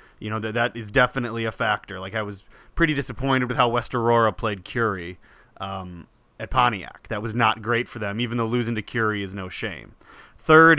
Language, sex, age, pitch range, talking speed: English, male, 30-49, 110-130 Hz, 200 wpm